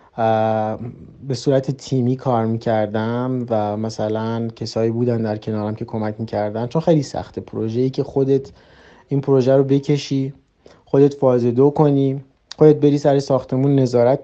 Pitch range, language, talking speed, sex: 120-150 Hz, Persian, 140 wpm, male